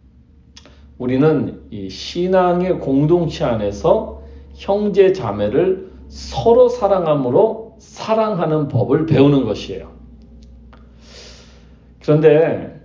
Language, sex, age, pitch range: Korean, male, 40-59, 100-160 Hz